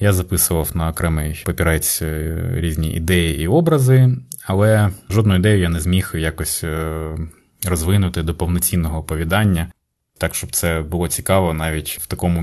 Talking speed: 135 wpm